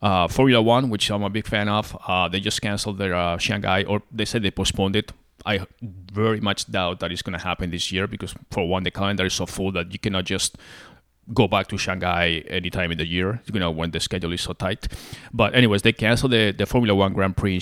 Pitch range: 90-105 Hz